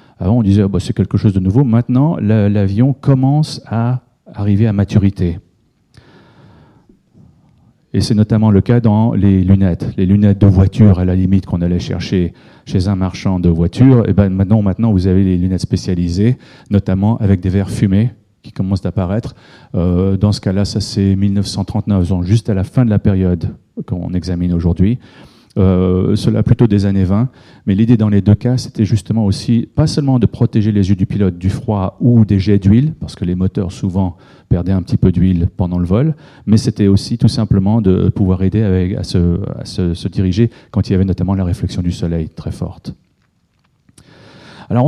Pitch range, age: 95-115 Hz, 40-59